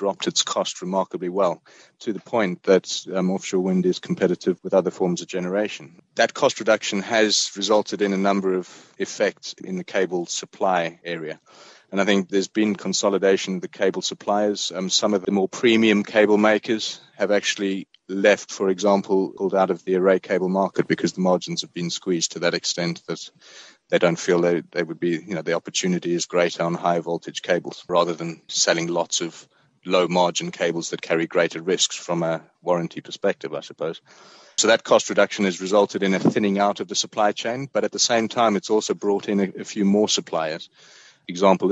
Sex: male